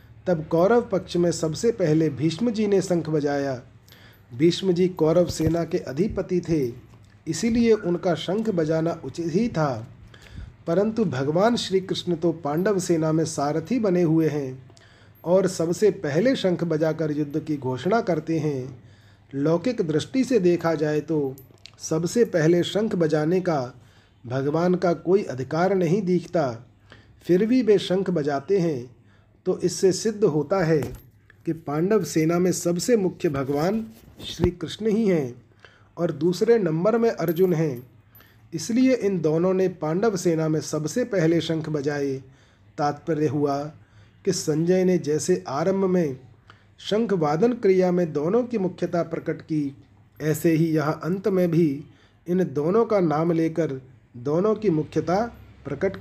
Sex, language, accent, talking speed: male, Hindi, native, 145 wpm